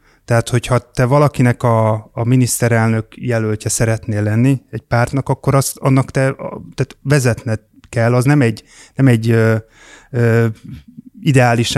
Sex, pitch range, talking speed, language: male, 115-130 Hz, 145 wpm, Hungarian